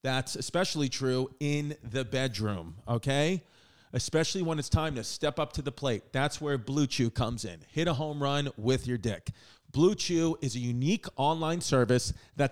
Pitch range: 130-165 Hz